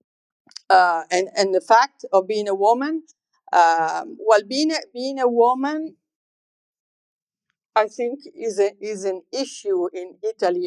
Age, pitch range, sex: 50-69, 180-255 Hz, female